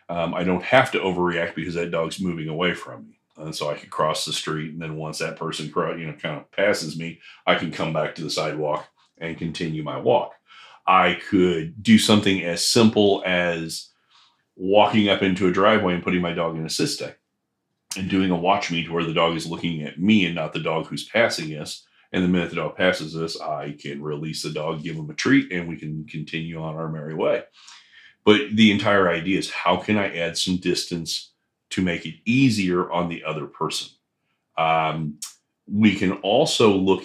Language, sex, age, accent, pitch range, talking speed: English, male, 30-49, American, 80-95 Hz, 210 wpm